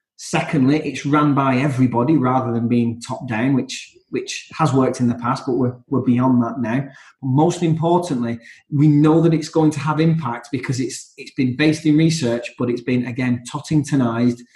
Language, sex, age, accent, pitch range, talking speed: English, male, 20-39, British, 125-155 Hz, 185 wpm